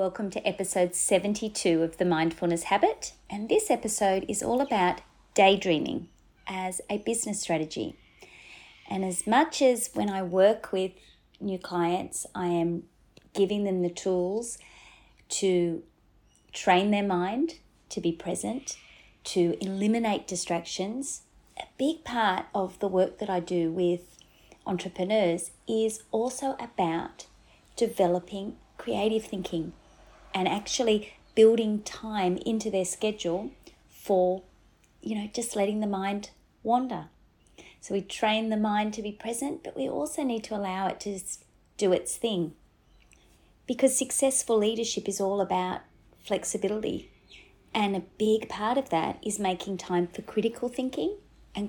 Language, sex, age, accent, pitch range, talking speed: English, female, 30-49, Australian, 180-220 Hz, 135 wpm